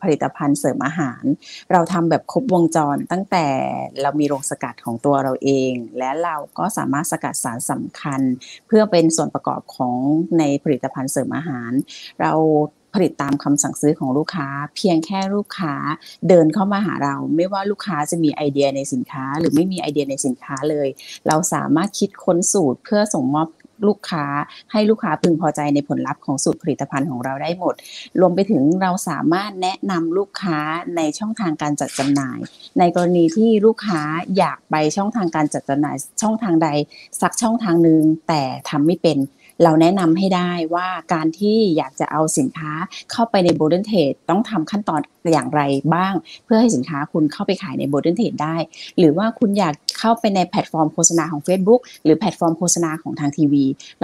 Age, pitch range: 30-49, 145-185 Hz